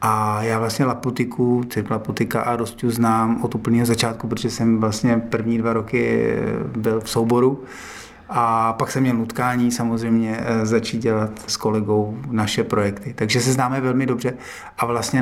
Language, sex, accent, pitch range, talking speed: Czech, male, native, 105-115 Hz, 150 wpm